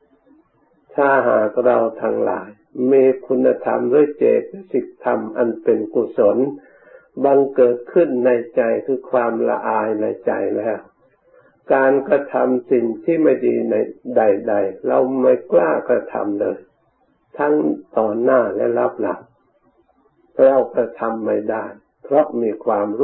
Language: Thai